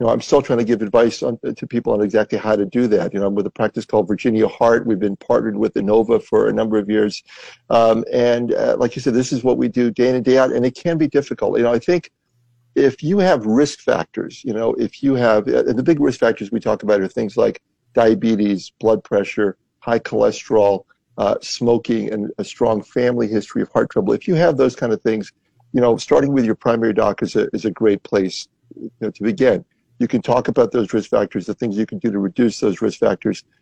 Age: 50-69